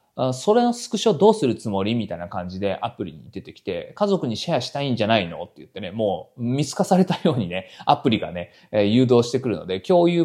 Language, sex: Japanese, male